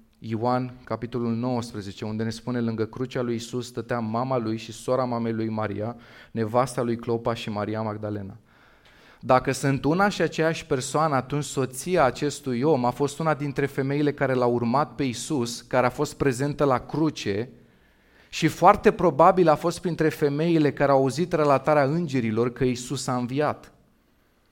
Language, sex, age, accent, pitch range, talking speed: Romanian, male, 30-49, native, 120-155 Hz, 160 wpm